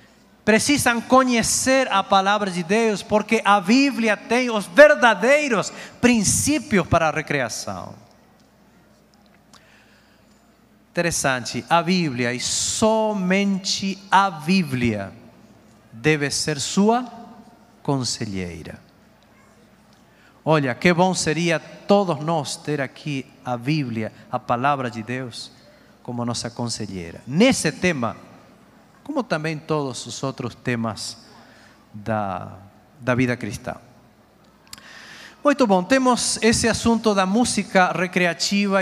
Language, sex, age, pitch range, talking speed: Portuguese, male, 40-59, 135-210 Hz, 100 wpm